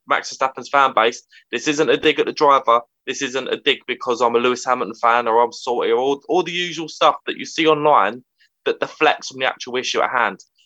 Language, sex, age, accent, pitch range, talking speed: English, male, 20-39, British, 130-165 Hz, 235 wpm